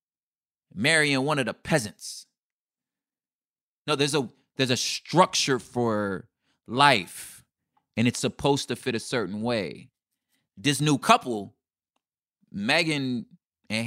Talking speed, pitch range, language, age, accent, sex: 110 wpm, 130-190 Hz, English, 30-49, American, male